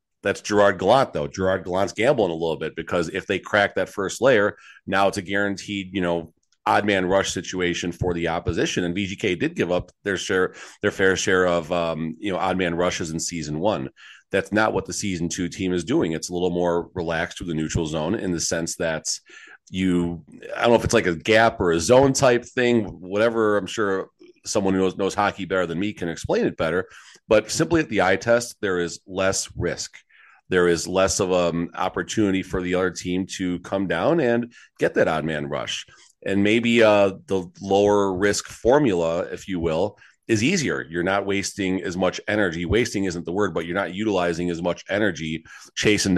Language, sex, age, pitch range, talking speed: English, male, 40-59, 85-105 Hz, 210 wpm